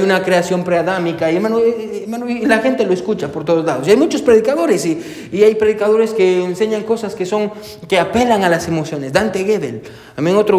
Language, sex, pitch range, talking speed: Spanish, male, 175-230 Hz, 210 wpm